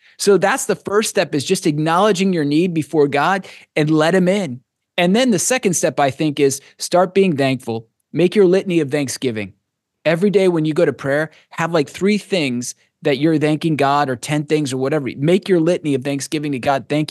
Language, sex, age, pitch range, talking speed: English, male, 20-39, 115-155 Hz, 210 wpm